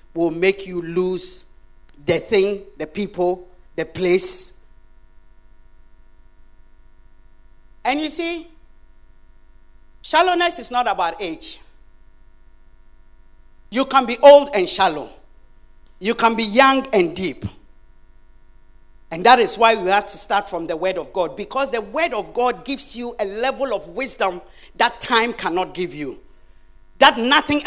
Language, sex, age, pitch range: English, male, 50-69, 185-275 Hz